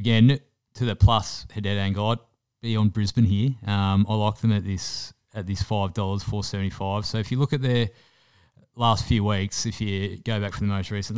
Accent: Australian